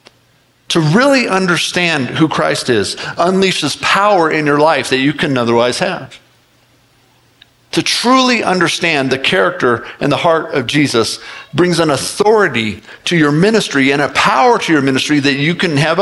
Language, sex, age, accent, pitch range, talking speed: English, male, 50-69, American, 145-200 Hz, 155 wpm